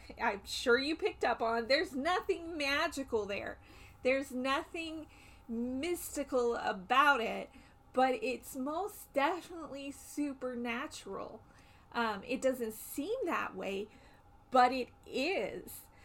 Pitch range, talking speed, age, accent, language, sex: 220-275 Hz, 110 wpm, 30-49, American, English, female